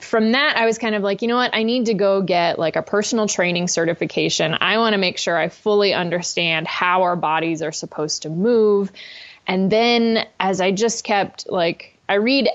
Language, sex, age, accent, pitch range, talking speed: English, female, 20-39, American, 180-220 Hz, 210 wpm